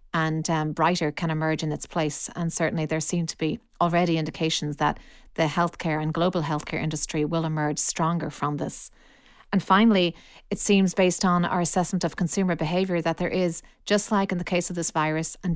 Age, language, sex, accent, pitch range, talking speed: 40-59, English, female, Irish, 160-185 Hz, 195 wpm